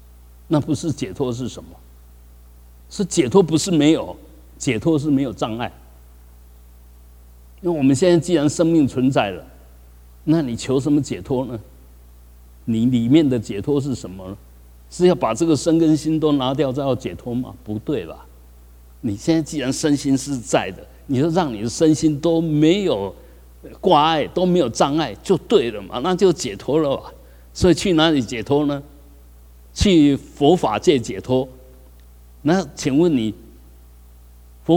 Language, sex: Chinese, male